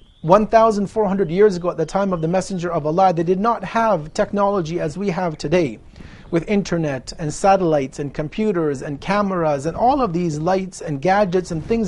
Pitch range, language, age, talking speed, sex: 160-200 Hz, English, 40-59, 185 wpm, male